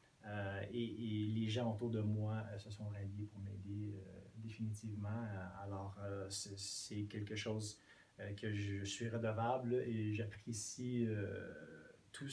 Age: 30-49